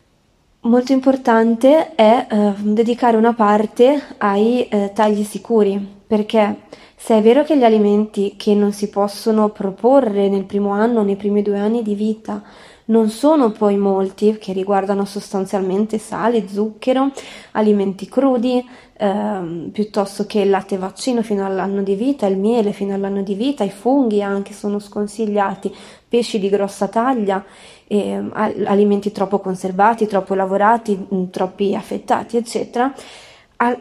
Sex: female